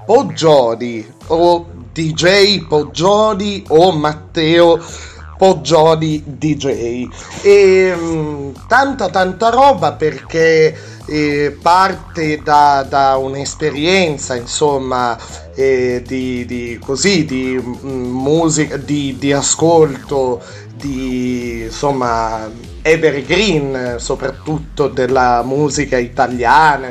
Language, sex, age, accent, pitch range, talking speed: Italian, male, 30-49, native, 120-150 Hz, 80 wpm